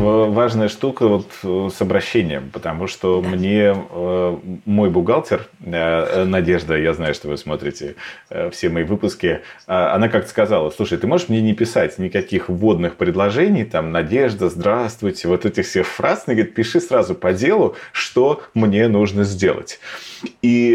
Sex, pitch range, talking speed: male, 95-120 Hz, 155 wpm